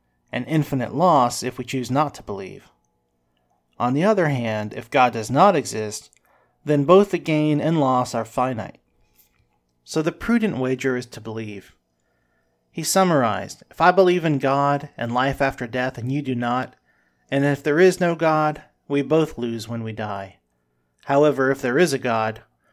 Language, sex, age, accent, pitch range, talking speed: English, male, 40-59, American, 110-150 Hz, 175 wpm